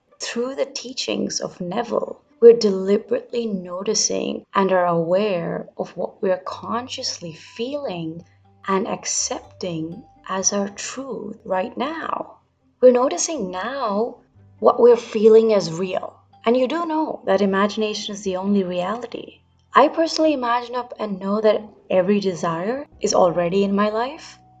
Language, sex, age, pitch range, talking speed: English, female, 20-39, 185-230 Hz, 135 wpm